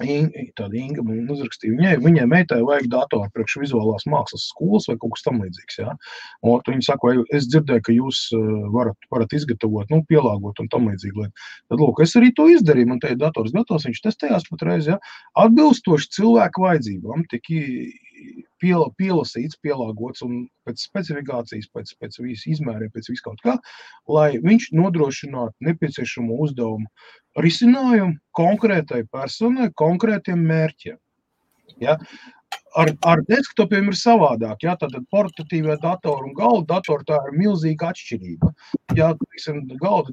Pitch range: 125-165 Hz